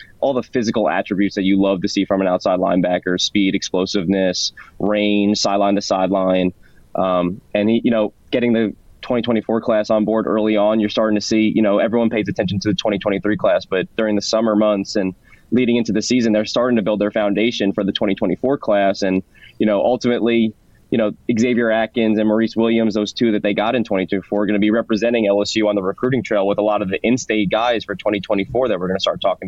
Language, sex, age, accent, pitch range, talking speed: English, male, 20-39, American, 100-110 Hz, 220 wpm